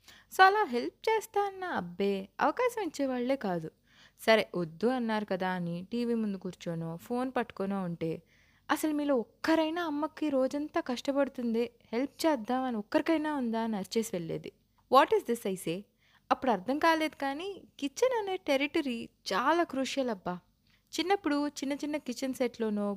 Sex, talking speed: female, 140 wpm